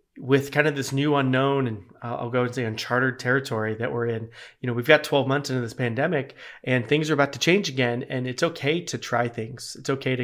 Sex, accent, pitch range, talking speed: male, American, 120-140 Hz, 240 wpm